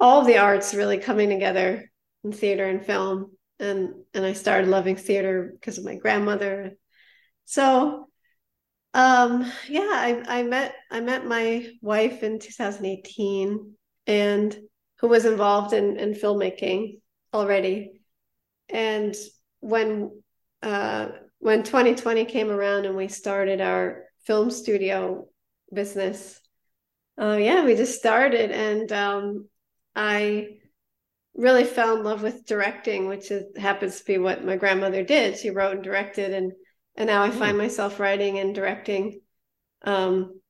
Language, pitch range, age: English, 195-230 Hz, 30-49